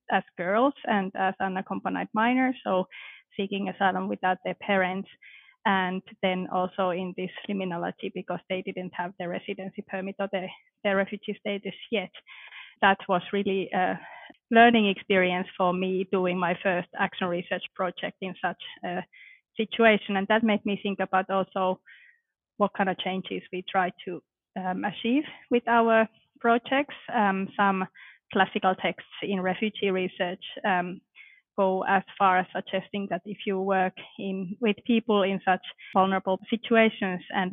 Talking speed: 145 wpm